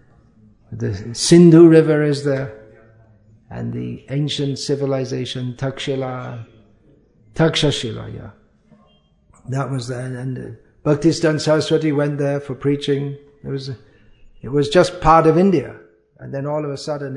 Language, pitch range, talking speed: English, 110-145 Hz, 135 wpm